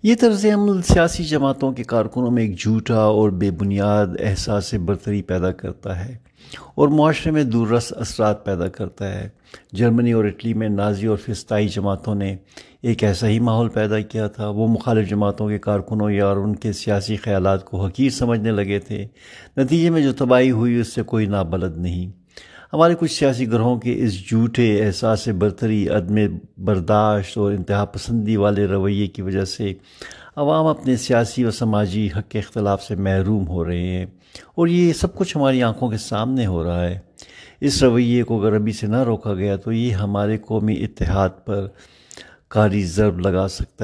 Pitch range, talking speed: 100-120 Hz, 180 wpm